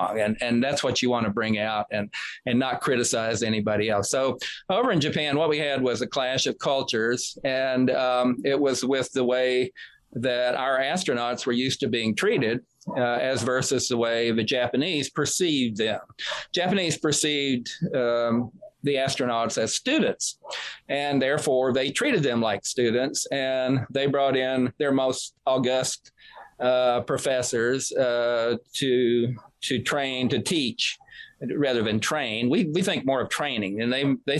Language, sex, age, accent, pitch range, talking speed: English, male, 40-59, American, 120-135 Hz, 160 wpm